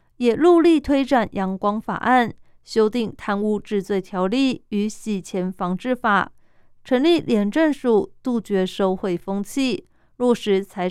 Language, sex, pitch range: Chinese, female, 200-260 Hz